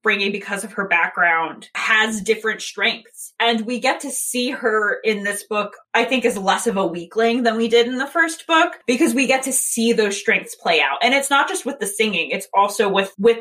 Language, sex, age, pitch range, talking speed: English, female, 20-39, 190-245 Hz, 230 wpm